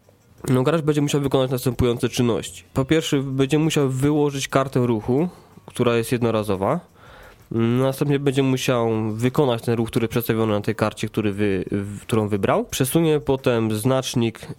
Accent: native